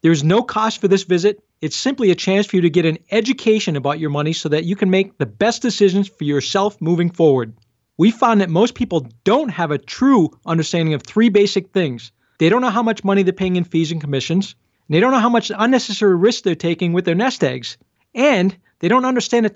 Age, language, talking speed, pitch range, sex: 40-59, English, 235 wpm, 170-230 Hz, male